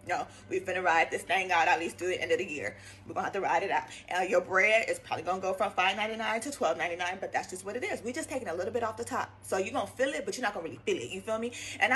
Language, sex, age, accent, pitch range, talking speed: English, female, 20-39, American, 235-330 Hz, 345 wpm